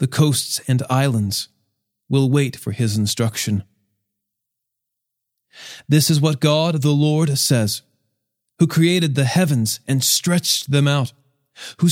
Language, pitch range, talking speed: English, 120-160 Hz, 125 wpm